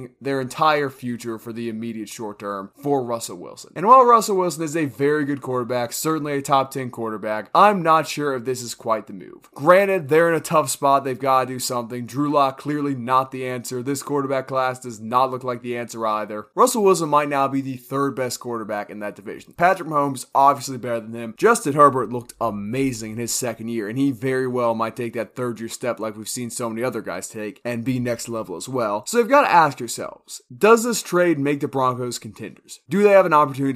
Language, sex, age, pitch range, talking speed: English, male, 20-39, 115-140 Hz, 230 wpm